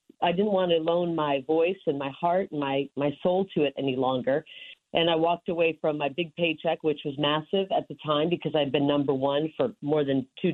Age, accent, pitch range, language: 40-59, American, 150-185 Hz, English